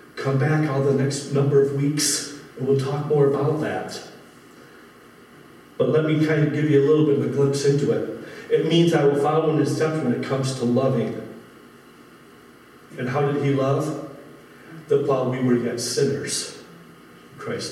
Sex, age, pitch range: male, 40-59, 140-155 Hz